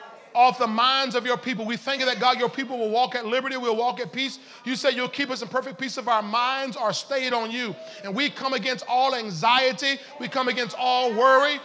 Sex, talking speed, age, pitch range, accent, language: male, 240 wpm, 40-59, 255-325 Hz, American, English